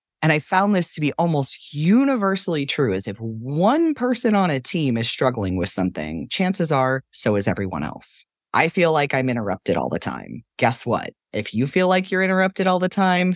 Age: 30-49